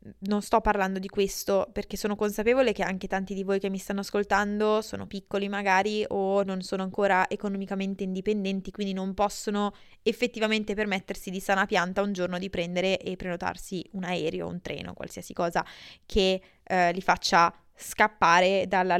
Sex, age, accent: female, 20-39, native